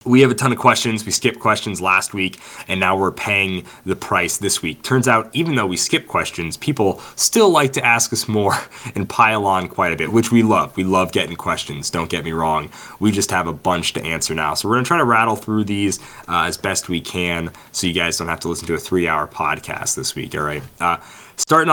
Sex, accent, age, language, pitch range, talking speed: male, American, 20-39, English, 90-125 Hz, 245 wpm